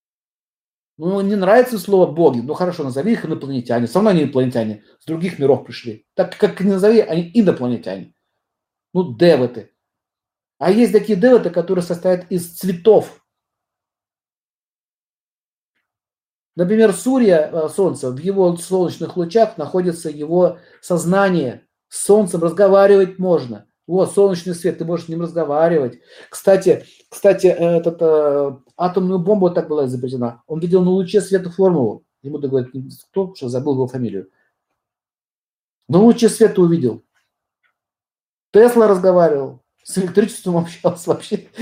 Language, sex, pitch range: Russian, male, 155-200 Hz